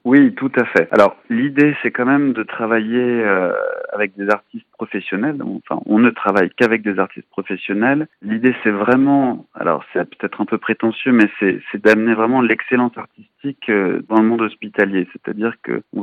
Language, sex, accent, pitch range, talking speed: French, male, French, 100-120 Hz, 175 wpm